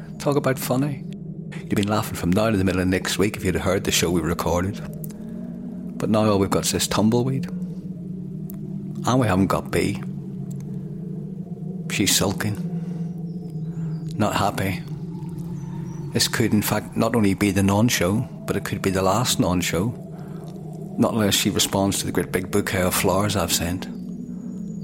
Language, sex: English, male